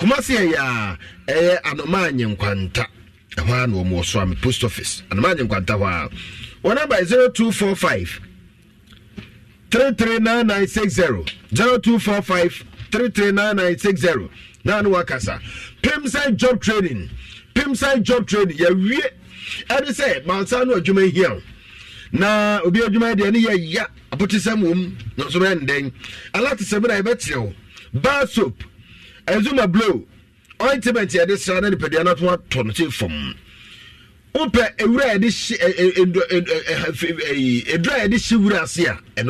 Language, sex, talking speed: English, male, 110 wpm